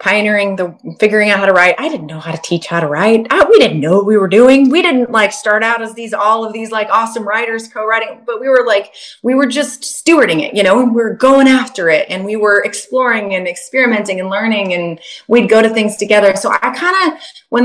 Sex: female